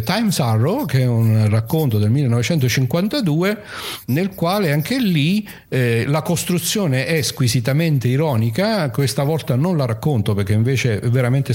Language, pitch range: Italian, 110-150 Hz